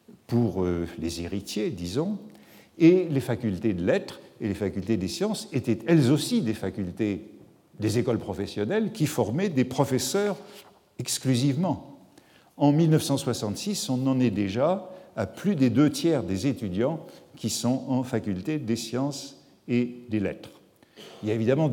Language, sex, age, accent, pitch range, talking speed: French, male, 50-69, French, 110-150 Hz, 145 wpm